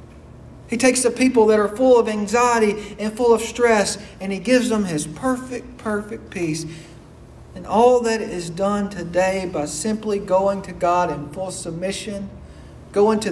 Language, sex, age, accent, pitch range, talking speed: English, male, 50-69, American, 145-200 Hz, 165 wpm